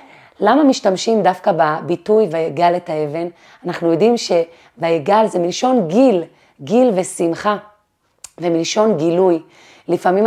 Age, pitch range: 30-49, 175-220 Hz